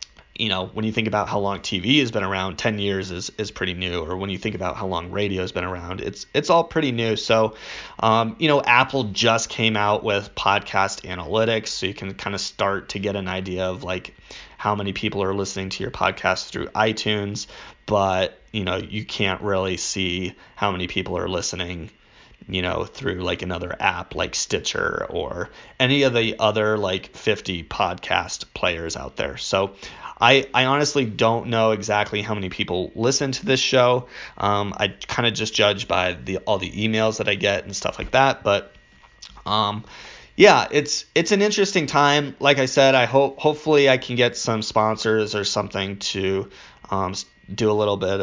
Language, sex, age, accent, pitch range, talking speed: English, male, 30-49, American, 95-120 Hz, 195 wpm